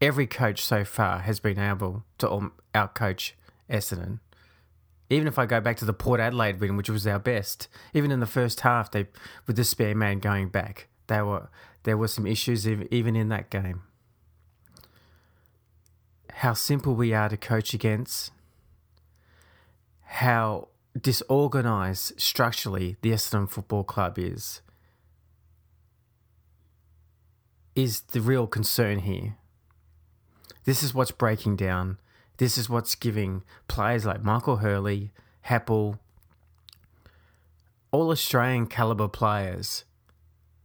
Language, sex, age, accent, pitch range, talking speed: English, male, 30-49, Australian, 90-120 Hz, 125 wpm